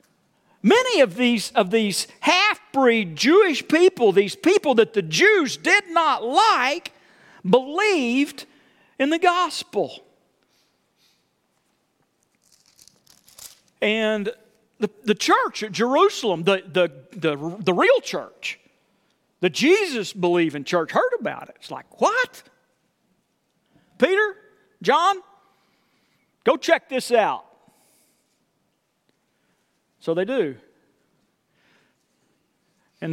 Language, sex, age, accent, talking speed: English, male, 50-69, American, 85 wpm